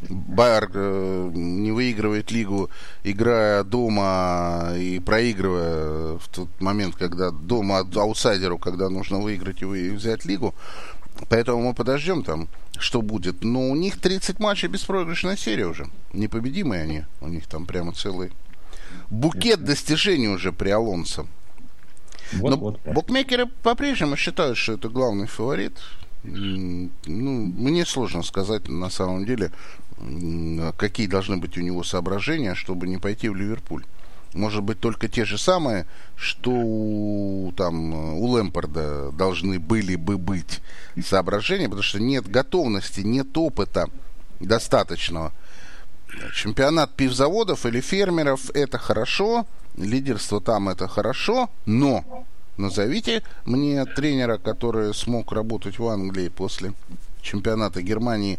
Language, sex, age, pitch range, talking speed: Russian, male, 30-49, 90-120 Hz, 120 wpm